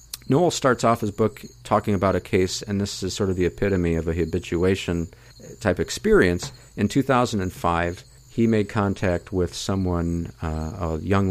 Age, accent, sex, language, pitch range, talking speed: 50-69, American, male, English, 95-120 Hz, 160 wpm